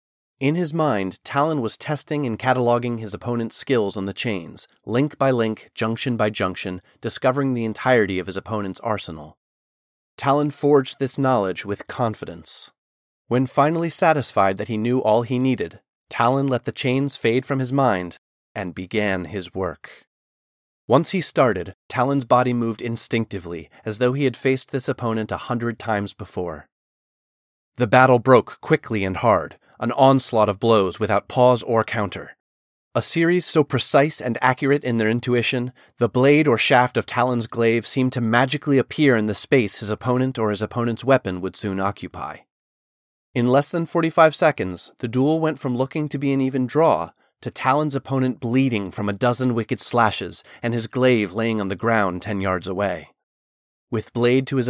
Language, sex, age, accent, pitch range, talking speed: English, male, 30-49, American, 105-135 Hz, 170 wpm